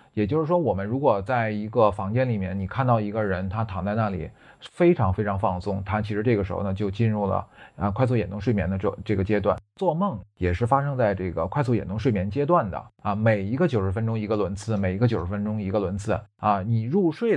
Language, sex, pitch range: Chinese, male, 100-120 Hz